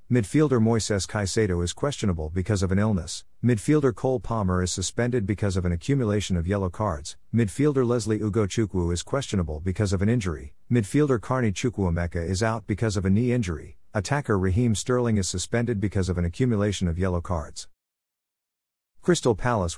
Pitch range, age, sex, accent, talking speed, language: 90-120 Hz, 50-69, male, American, 165 wpm, English